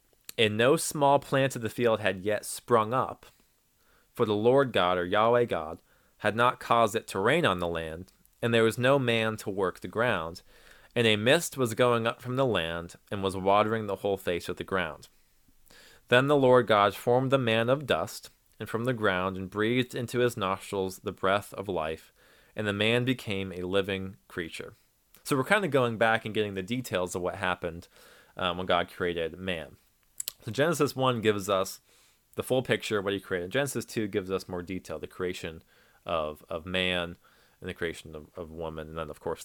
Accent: American